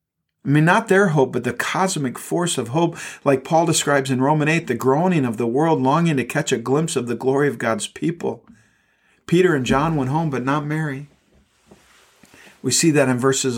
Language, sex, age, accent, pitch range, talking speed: English, male, 50-69, American, 135-170 Hz, 205 wpm